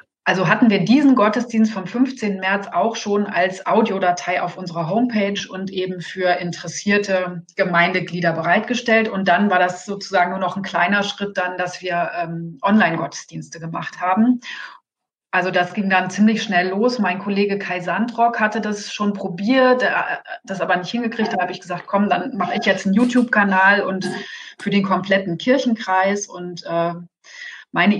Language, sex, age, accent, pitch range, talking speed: German, female, 30-49, German, 180-220 Hz, 165 wpm